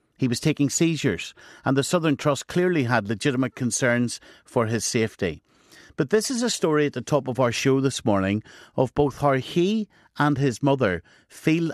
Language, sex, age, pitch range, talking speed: English, male, 50-69, 120-145 Hz, 185 wpm